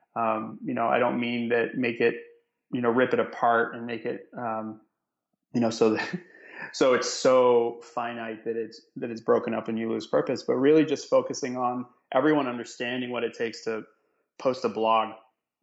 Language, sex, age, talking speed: English, male, 20-39, 190 wpm